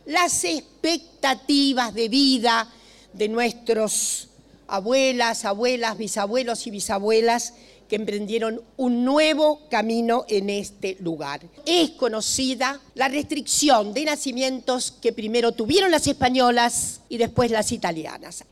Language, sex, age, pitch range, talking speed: Spanish, female, 50-69, 220-295 Hz, 110 wpm